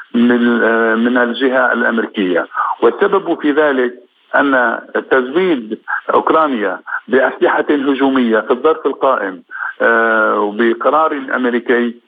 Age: 50-69